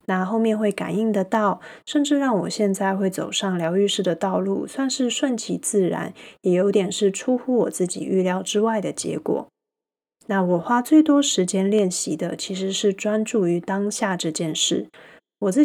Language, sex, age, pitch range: Chinese, female, 20-39, 180-225 Hz